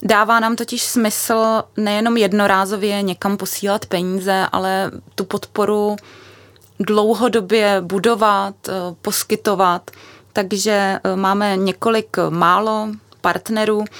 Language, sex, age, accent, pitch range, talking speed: Czech, female, 20-39, native, 190-210 Hz, 85 wpm